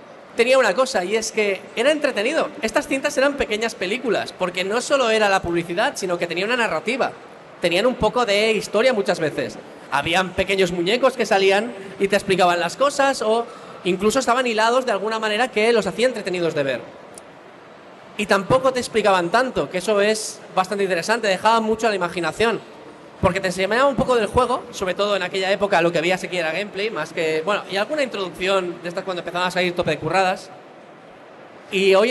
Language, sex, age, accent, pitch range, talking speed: Spanish, male, 20-39, Spanish, 185-225 Hz, 190 wpm